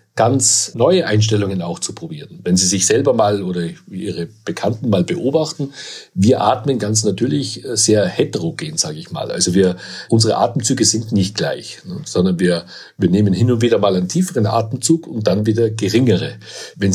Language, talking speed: German, 170 wpm